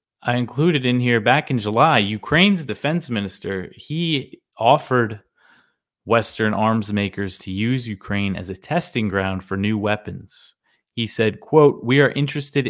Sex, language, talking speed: male, English, 145 wpm